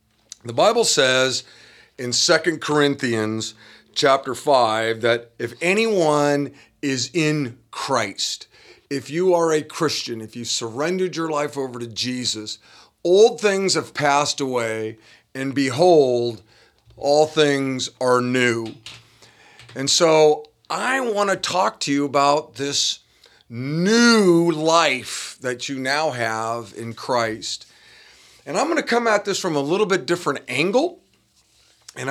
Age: 40-59